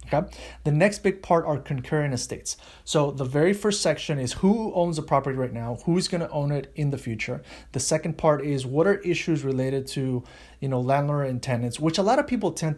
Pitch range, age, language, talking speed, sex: 130-160 Hz, 30-49, English, 225 wpm, male